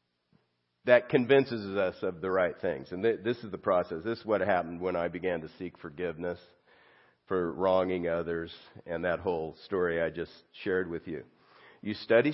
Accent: American